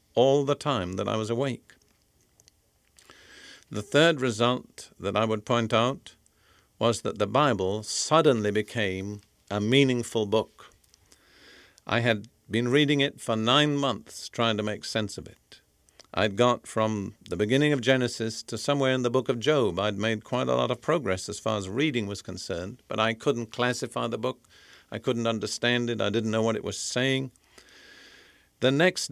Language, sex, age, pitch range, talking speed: English, male, 50-69, 105-130 Hz, 175 wpm